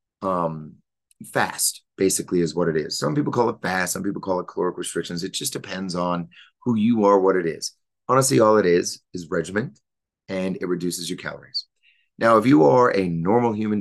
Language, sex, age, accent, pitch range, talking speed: English, male, 30-49, American, 90-115 Hz, 200 wpm